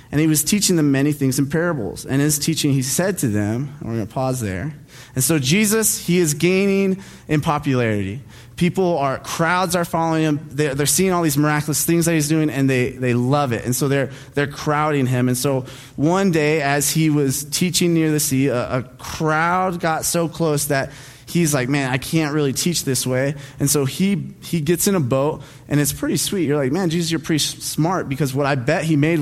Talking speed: 230 wpm